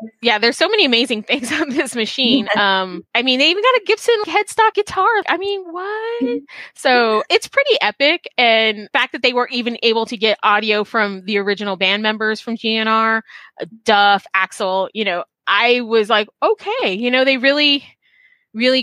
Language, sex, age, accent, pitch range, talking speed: English, female, 20-39, American, 205-260 Hz, 180 wpm